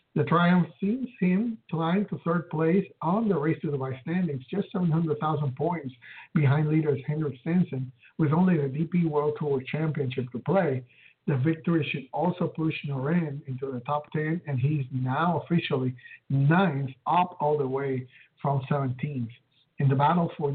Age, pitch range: 60-79, 135-165 Hz